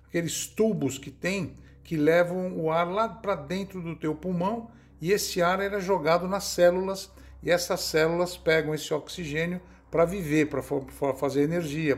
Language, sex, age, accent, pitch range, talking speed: Portuguese, male, 60-79, Brazilian, 135-185 Hz, 160 wpm